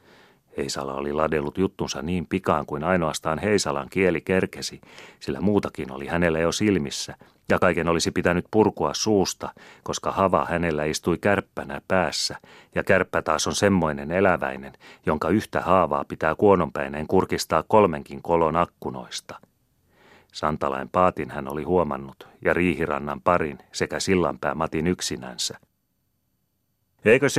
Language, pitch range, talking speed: Finnish, 75-95 Hz, 125 wpm